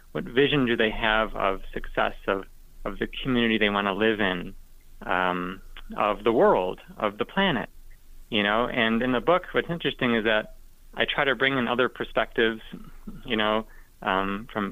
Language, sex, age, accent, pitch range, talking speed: English, male, 30-49, American, 105-125 Hz, 180 wpm